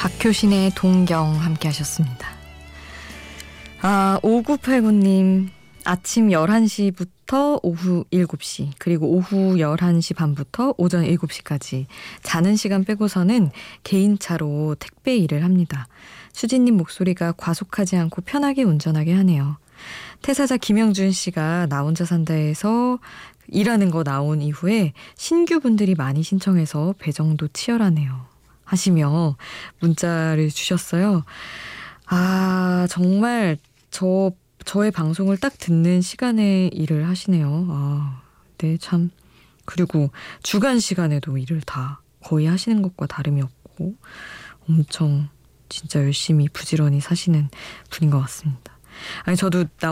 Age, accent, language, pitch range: 20-39, native, Korean, 155-195 Hz